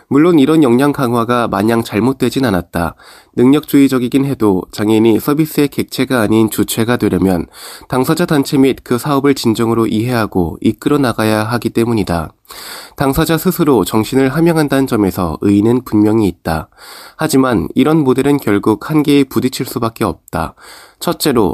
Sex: male